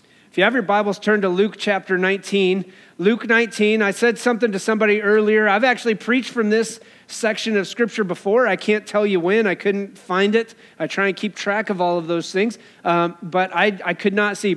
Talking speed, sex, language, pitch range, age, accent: 220 wpm, male, English, 190-230 Hz, 40-59, American